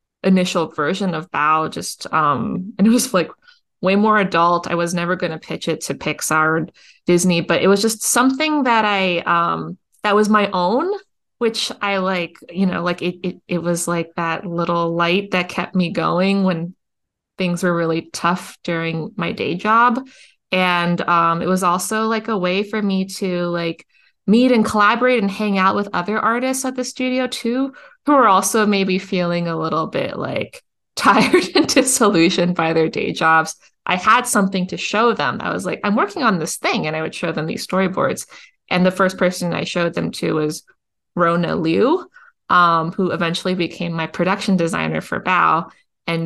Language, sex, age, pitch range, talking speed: English, female, 20-39, 170-220 Hz, 190 wpm